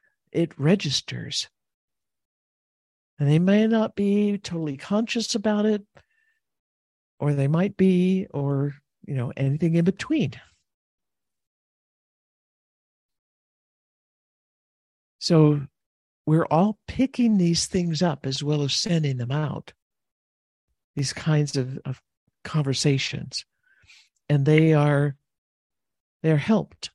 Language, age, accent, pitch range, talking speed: English, 60-79, American, 140-180 Hz, 100 wpm